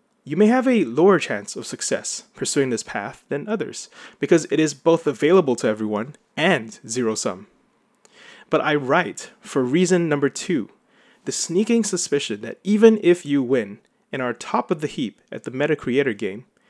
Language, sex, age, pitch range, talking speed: English, male, 20-39, 120-170 Hz, 175 wpm